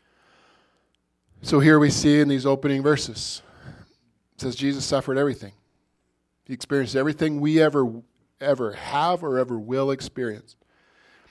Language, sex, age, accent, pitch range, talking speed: English, male, 40-59, American, 120-160 Hz, 125 wpm